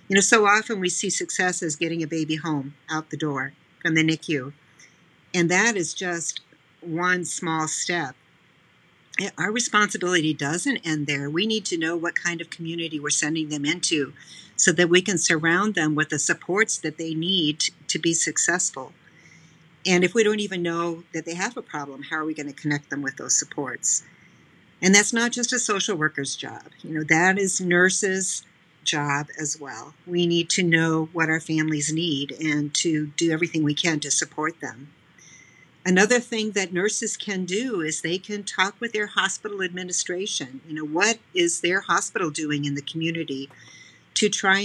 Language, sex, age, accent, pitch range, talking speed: English, female, 50-69, American, 155-190 Hz, 185 wpm